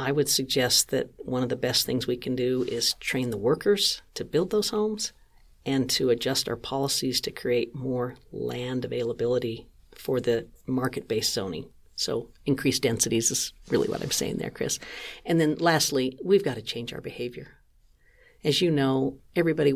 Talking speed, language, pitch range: 175 wpm, English, 125-150 Hz